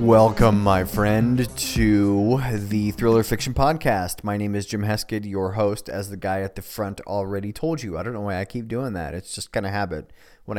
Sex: male